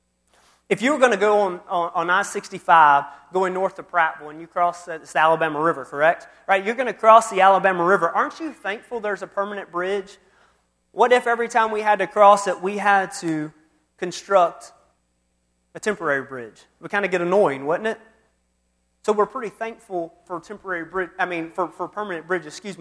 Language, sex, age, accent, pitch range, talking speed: English, male, 30-49, American, 160-200 Hz, 190 wpm